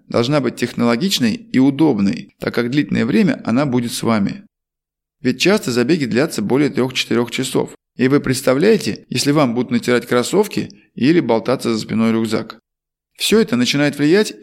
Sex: male